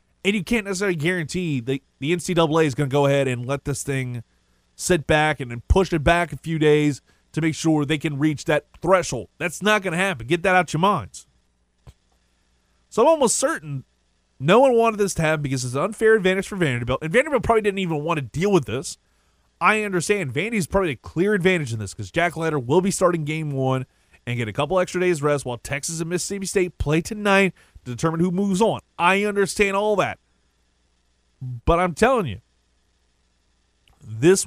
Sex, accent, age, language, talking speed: male, American, 30-49, English, 205 wpm